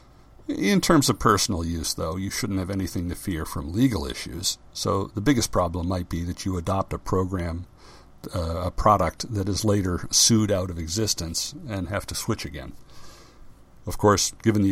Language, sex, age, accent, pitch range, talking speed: English, male, 60-79, American, 90-120 Hz, 185 wpm